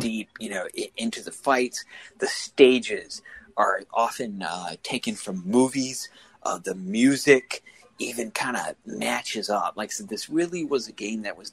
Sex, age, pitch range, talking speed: male, 30-49, 105-140 Hz, 160 wpm